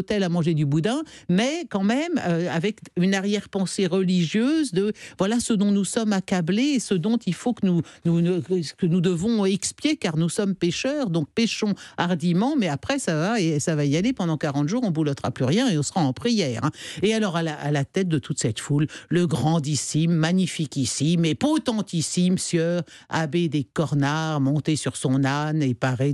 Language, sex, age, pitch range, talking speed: French, male, 60-79, 145-205 Hz, 200 wpm